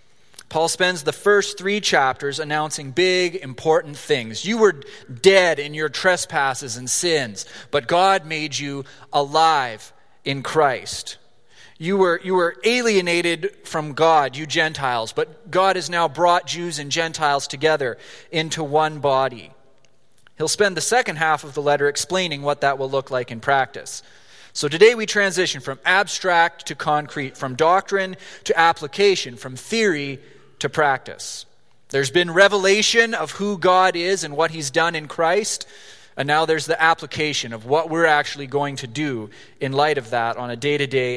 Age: 30-49